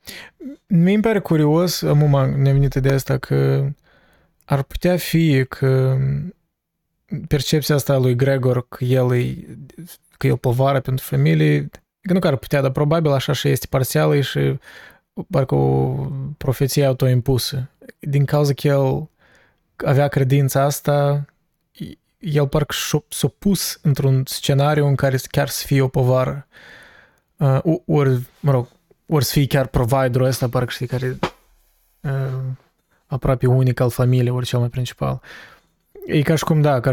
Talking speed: 145 wpm